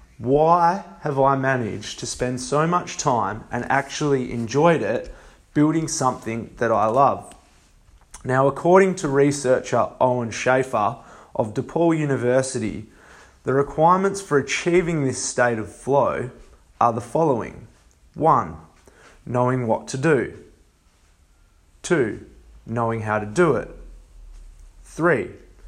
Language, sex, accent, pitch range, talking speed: English, male, Australian, 90-145 Hz, 115 wpm